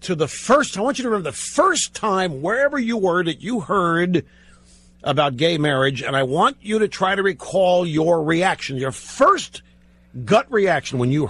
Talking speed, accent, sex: 190 wpm, American, male